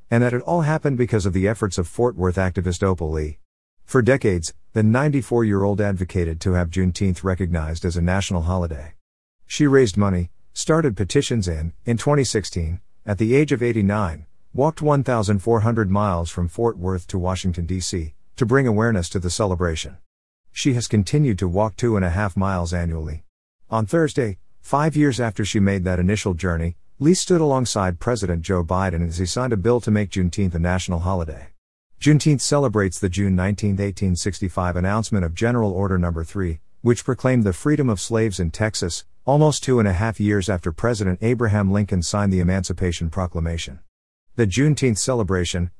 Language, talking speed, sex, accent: English, 170 wpm, male, American